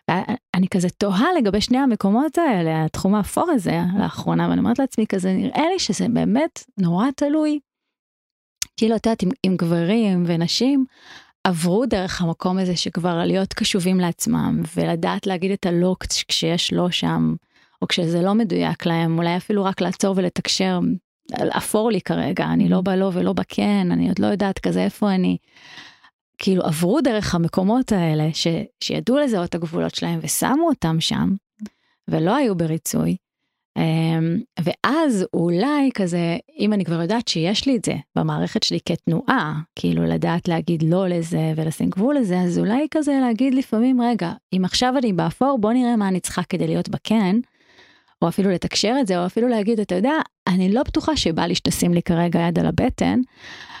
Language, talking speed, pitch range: Hebrew, 160 wpm, 170-235 Hz